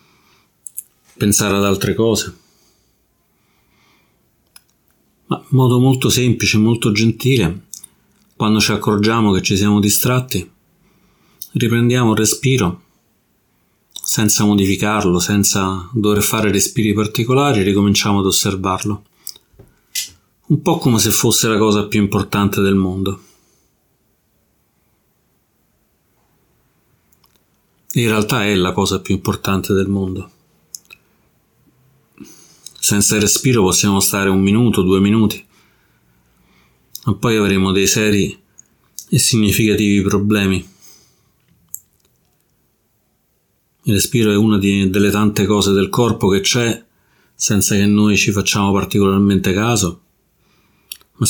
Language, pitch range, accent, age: Italian, 100-110 Hz, native, 40-59